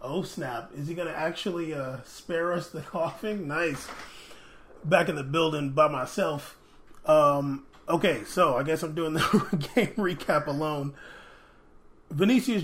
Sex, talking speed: male, 140 wpm